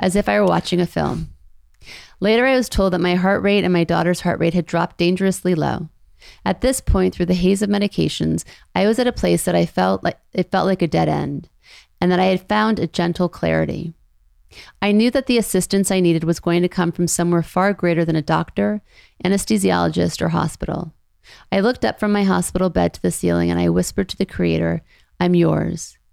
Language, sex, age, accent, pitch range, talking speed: English, female, 30-49, American, 165-200 Hz, 215 wpm